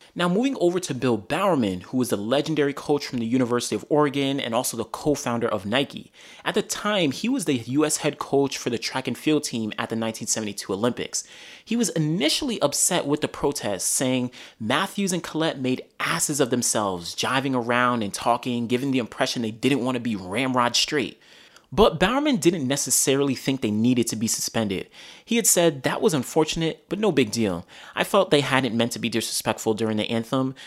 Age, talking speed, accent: 30-49, 200 wpm, American